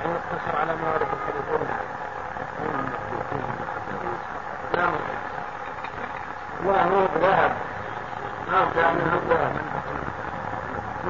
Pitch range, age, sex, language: 170-195 Hz, 50-69, male, Arabic